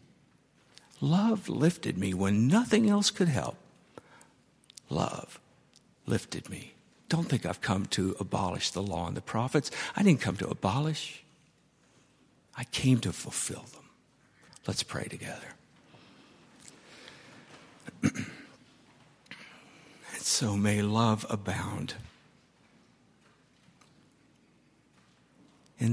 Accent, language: American, English